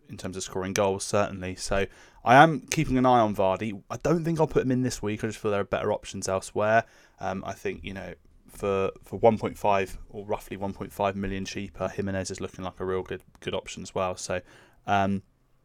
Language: English